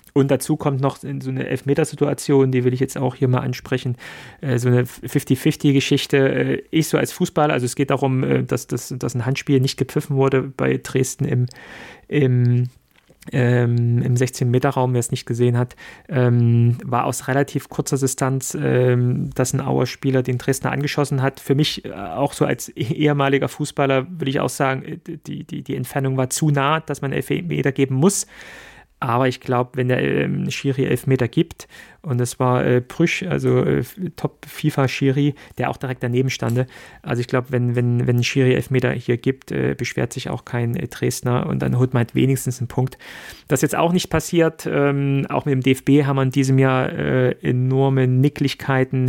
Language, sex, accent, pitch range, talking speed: German, male, German, 125-140 Hz, 185 wpm